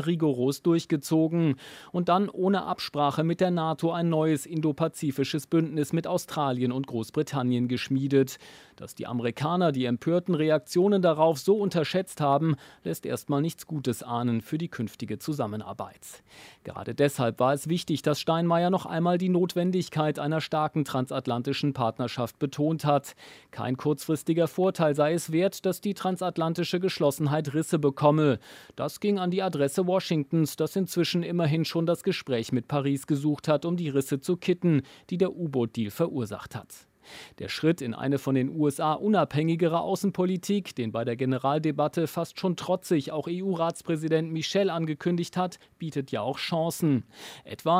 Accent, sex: German, male